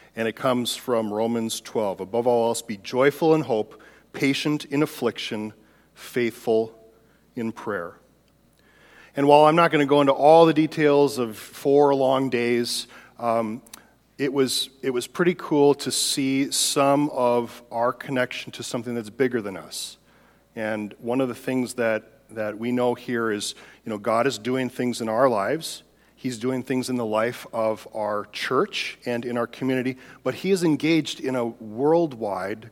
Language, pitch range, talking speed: English, 115-135 Hz, 170 wpm